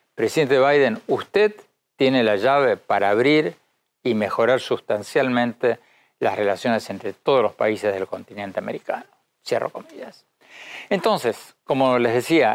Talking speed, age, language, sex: 125 wpm, 60-79, Spanish, male